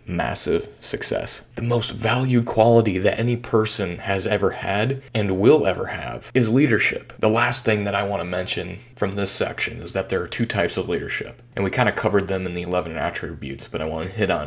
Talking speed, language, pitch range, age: 220 wpm, English, 95-120 Hz, 30-49